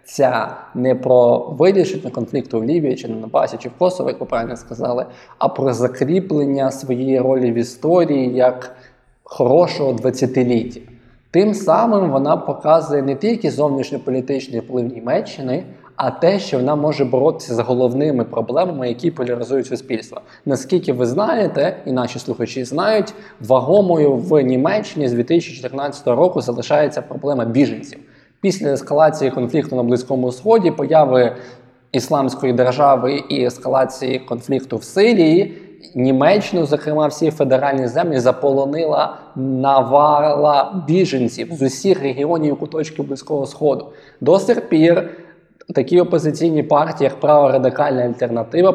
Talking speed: 120 wpm